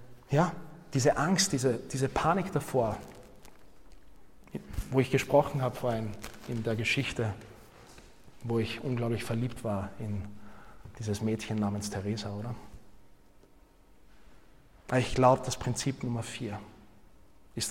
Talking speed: 110 wpm